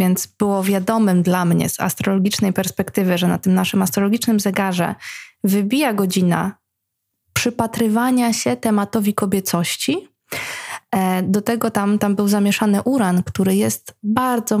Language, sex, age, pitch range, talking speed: Polish, female, 20-39, 190-225 Hz, 125 wpm